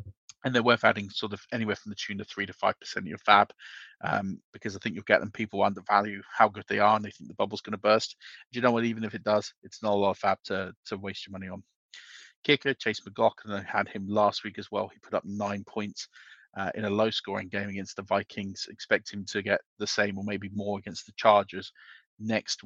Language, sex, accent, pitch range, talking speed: English, male, British, 100-110 Hz, 250 wpm